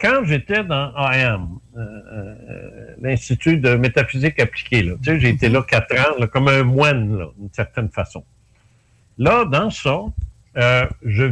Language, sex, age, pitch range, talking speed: French, male, 60-79, 115-140 Hz, 150 wpm